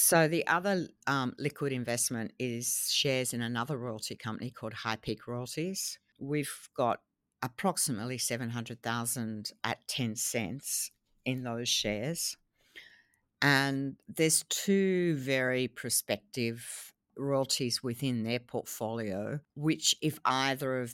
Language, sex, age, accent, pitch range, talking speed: English, female, 50-69, Australian, 115-135 Hz, 110 wpm